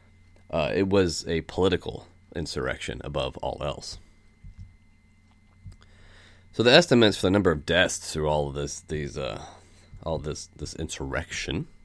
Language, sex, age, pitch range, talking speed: English, male, 30-49, 80-100 Hz, 140 wpm